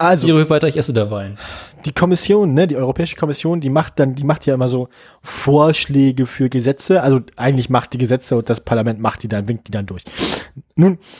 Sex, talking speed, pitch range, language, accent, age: male, 180 wpm, 130-160 Hz, German, German, 20-39